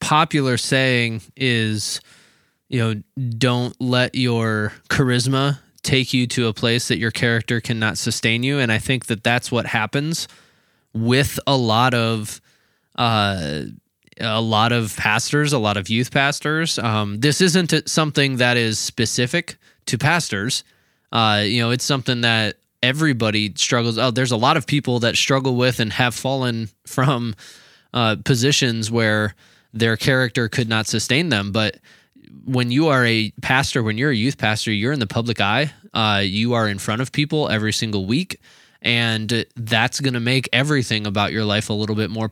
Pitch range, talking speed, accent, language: 110-135 Hz, 170 wpm, American, English